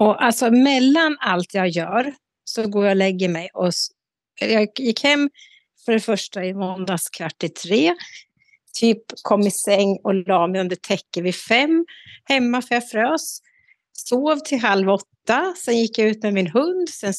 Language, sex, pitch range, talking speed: Swedish, female, 195-270 Hz, 180 wpm